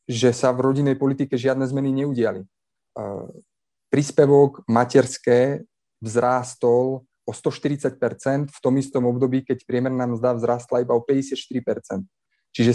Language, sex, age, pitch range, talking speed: Slovak, male, 30-49, 120-135 Hz, 120 wpm